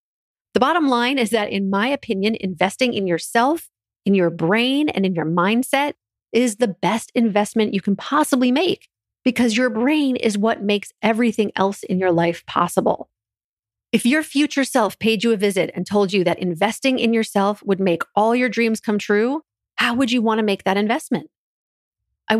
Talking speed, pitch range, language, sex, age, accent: 185 wpm, 195-260 Hz, English, female, 40-59, American